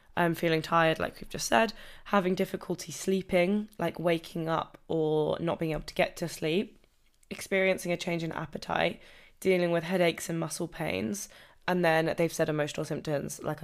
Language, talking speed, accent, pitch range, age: English, 165 wpm, British, 155-190 Hz, 10-29